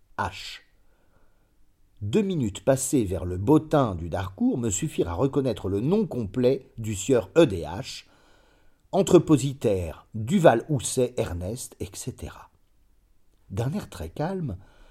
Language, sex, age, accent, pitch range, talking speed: French, male, 40-59, French, 110-160 Hz, 110 wpm